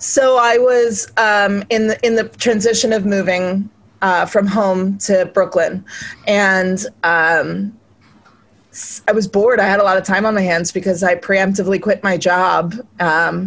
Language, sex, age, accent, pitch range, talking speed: English, female, 20-39, American, 180-220 Hz, 165 wpm